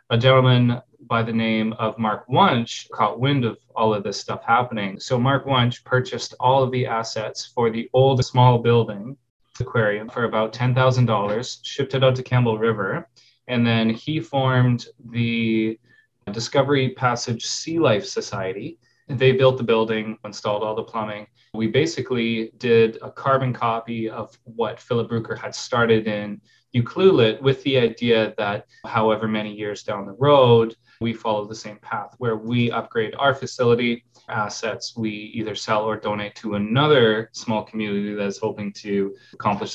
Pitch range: 110-125 Hz